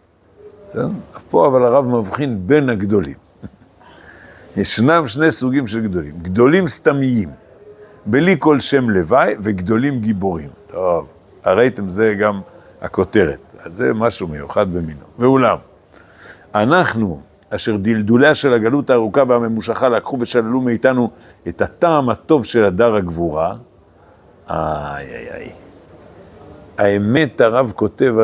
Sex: male